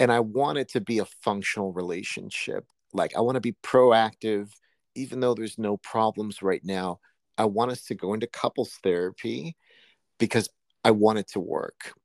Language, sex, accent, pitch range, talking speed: English, male, American, 95-120 Hz, 180 wpm